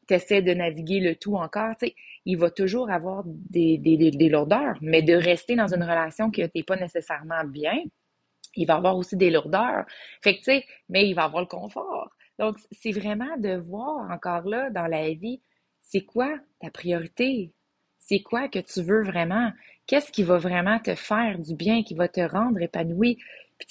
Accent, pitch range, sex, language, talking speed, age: Canadian, 180-230 Hz, female, French, 195 wpm, 30-49